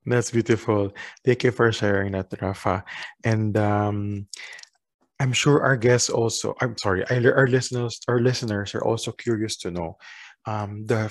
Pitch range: 105-130 Hz